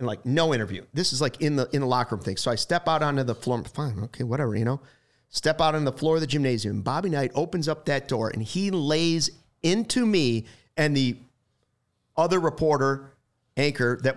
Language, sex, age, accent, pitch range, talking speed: English, male, 40-59, American, 125-180 Hz, 215 wpm